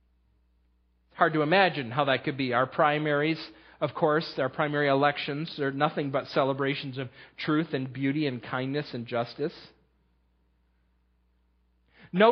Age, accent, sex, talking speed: 40-59, American, male, 130 wpm